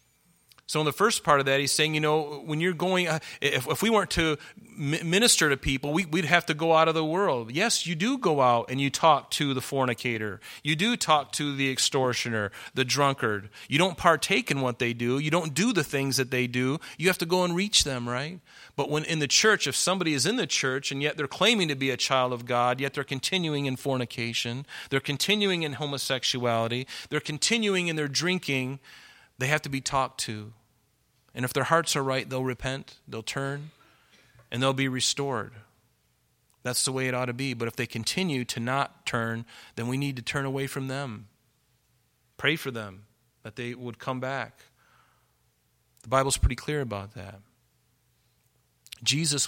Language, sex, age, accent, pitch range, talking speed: English, male, 40-59, American, 120-150 Hz, 200 wpm